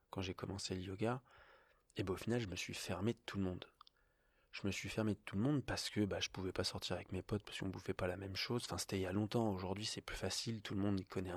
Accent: French